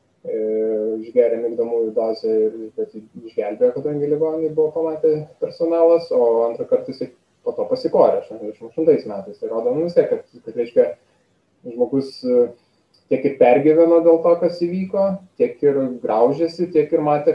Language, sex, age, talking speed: English, male, 20-39, 145 wpm